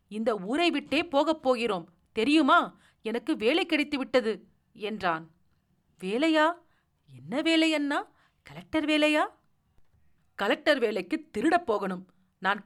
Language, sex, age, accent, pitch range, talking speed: Tamil, female, 40-59, native, 210-310 Hz, 100 wpm